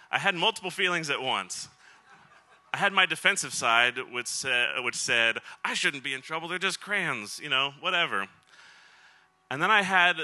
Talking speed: 175 wpm